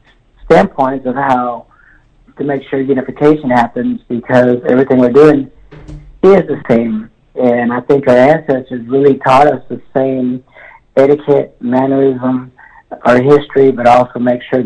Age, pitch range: 50-69, 120-140 Hz